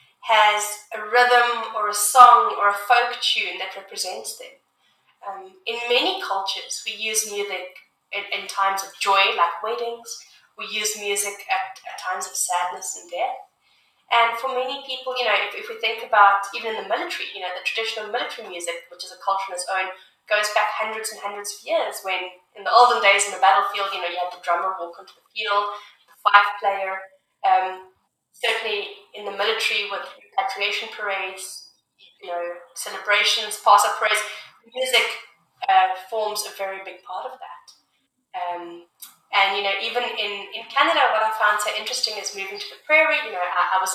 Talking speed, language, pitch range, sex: 185 wpm, English, 195-235 Hz, female